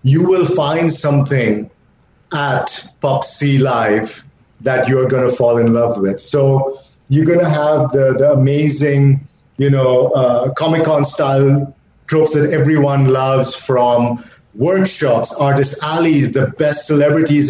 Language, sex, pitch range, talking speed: English, male, 135-165 Hz, 135 wpm